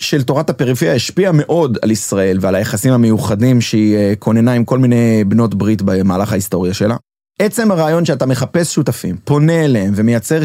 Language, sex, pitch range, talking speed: Hebrew, male, 115-145 Hz, 160 wpm